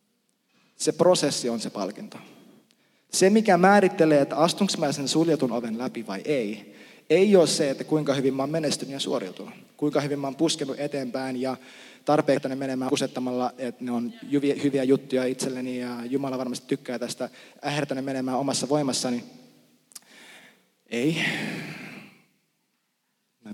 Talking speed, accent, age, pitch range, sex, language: 140 wpm, native, 20-39, 125-155 Hz, male, Finnish